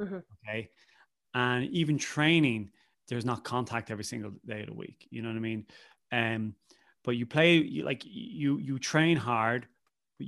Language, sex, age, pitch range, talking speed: English, male, 30-49, 115-130 Hz, 165 wpm